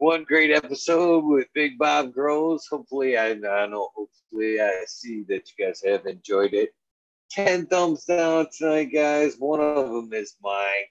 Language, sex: English, male